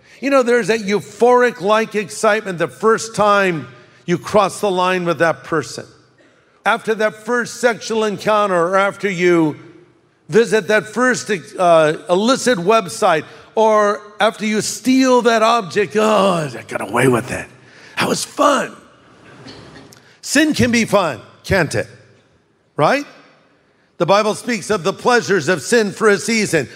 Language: English